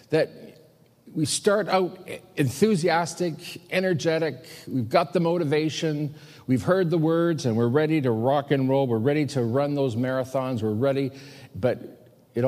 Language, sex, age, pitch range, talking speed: English, male, 50-69, 115-160 Hz, 150 wpm